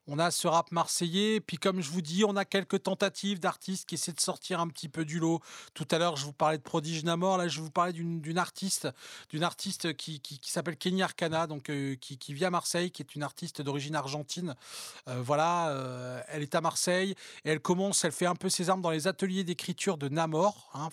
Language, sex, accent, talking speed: French, male, French, 245 wpm